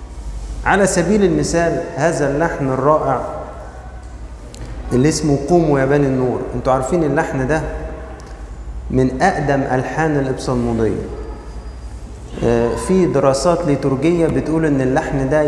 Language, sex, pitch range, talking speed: Arabic, male, 120-170 Hz, 100 wpm